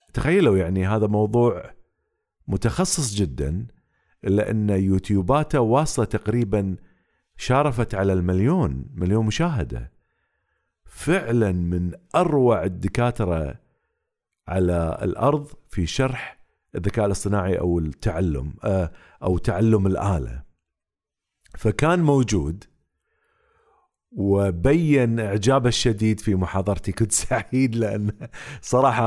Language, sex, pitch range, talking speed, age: Arabic, male, 95-130 Hz, 85 wpm, 50-69